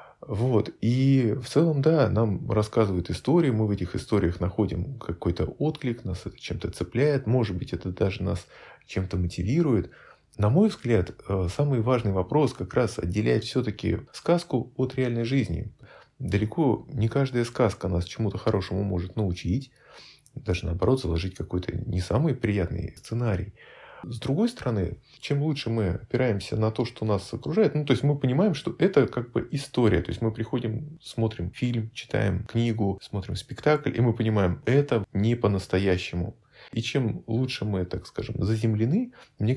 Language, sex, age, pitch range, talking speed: Russian, male, 20-39, 95-130 Hz, 155 wpm